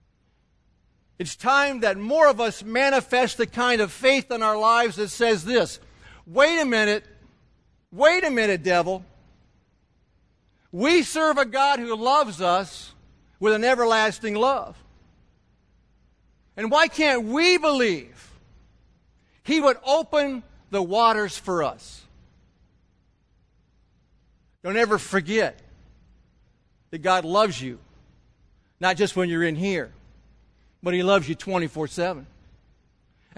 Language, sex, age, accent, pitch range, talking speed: English, male, 50-69, American, 195-270 Hz, 115 wpm